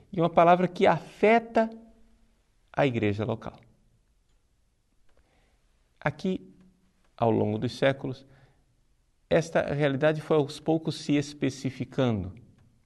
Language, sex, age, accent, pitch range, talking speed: Portuguese, male, 50-69, Brazilian, 120-170 Hz, 95 wpm